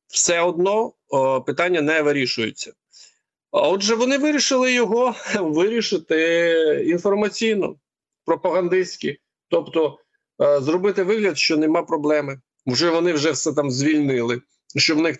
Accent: native